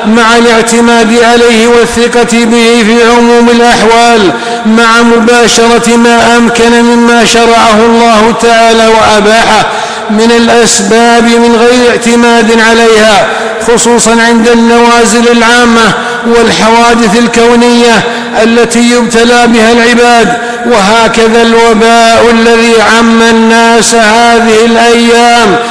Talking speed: 95 wpm